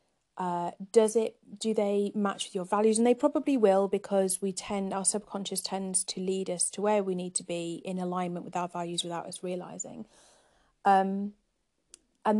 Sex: female